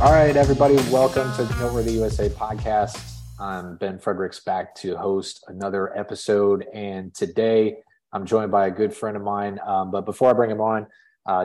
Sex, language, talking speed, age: male, English, 190 wpm, 30-49